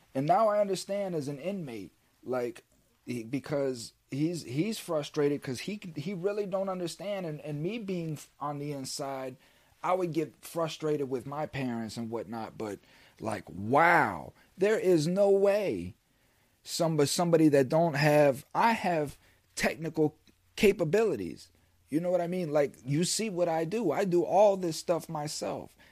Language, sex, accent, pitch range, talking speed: English, male, American, 125-170 Hz, 155 wpm